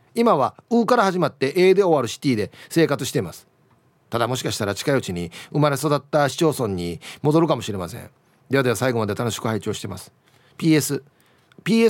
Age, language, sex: 40-59, Japanese, male